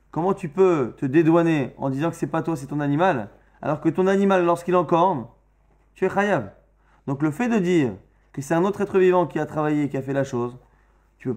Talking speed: 240 wpm